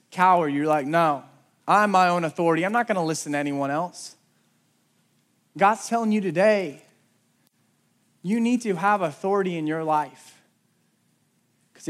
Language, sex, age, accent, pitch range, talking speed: English, male, 20-39, American, 175-225 Hz, 140 wpm